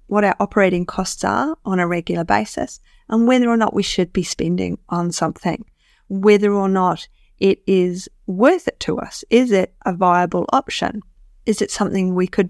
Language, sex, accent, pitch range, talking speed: English, female, Australian, 180-205 Hz, 180 wpm